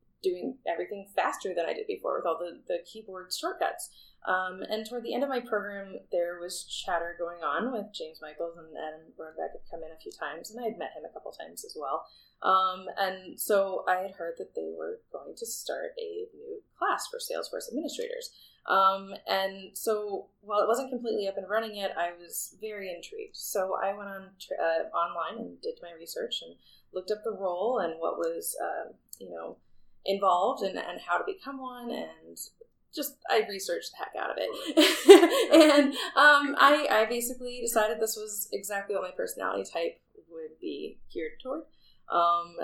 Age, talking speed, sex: 20-39, 190 wpm, female